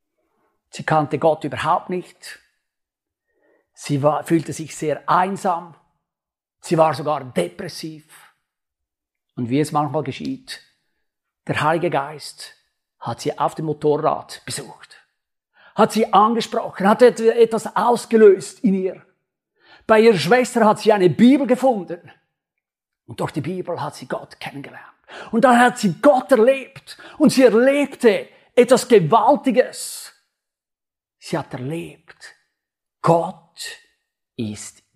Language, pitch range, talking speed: German, 150-230 Hz, 120 wpm